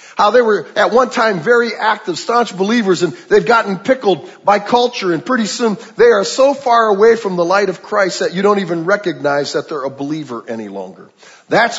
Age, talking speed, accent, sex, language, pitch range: 50-69, 210 wpm, American, male, English, 175-240 Hz